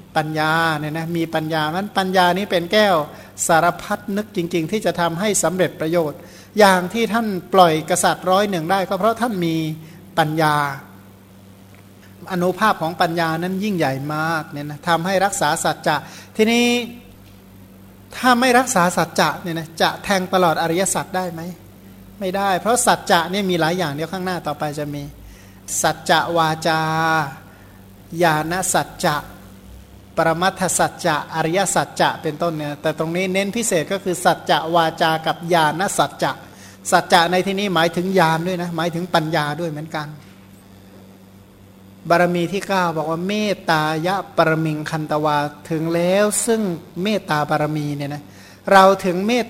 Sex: male